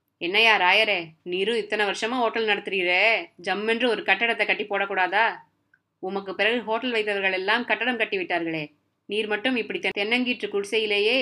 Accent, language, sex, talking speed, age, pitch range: native, Tamil, female, 135 wpm, 20-39, 180-230 Hz